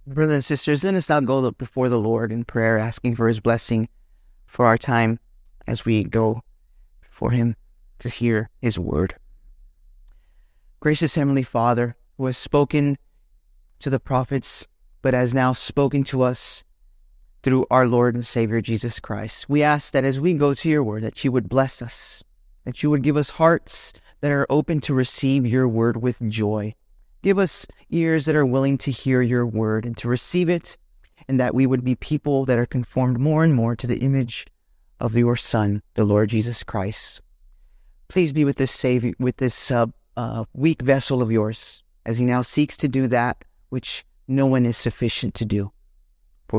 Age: 30-49